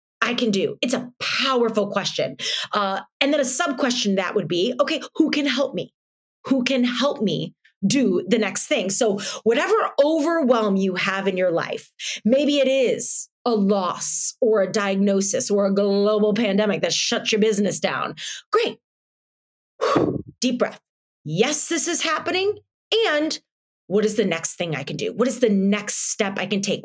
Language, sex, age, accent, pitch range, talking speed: English, female, 30-49, American, 205-285 Hz, 175 wpm